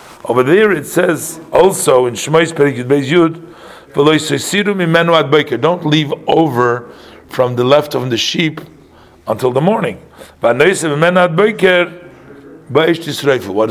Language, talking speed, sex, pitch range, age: English, 85 wpm, male, 130-170 Hz, 50-69